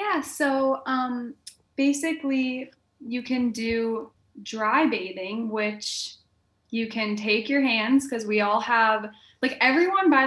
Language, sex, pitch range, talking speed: English, female, 205-250 Hz, 130 wpm